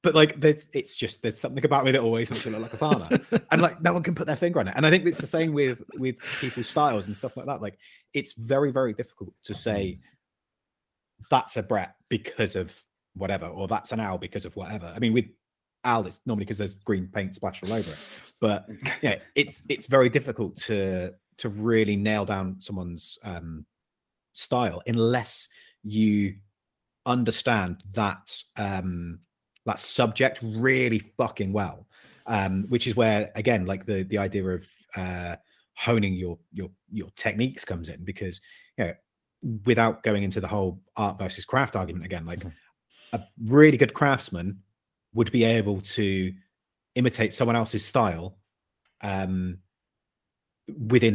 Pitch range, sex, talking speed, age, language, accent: 95-120 Hz, male, 170 wpm, 30-49, English, British